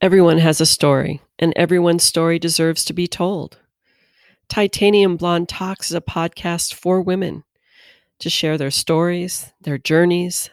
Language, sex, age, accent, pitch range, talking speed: English, female, 40-59, American, 165-210 Hz, 140 wpm